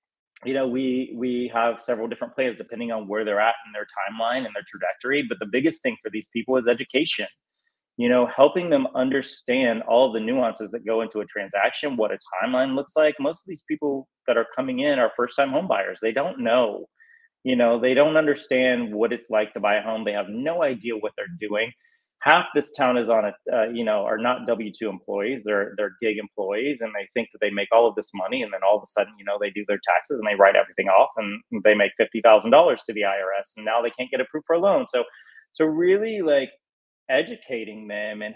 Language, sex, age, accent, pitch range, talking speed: English, male, 30-49, American, 110-140 Hz, 235 wpm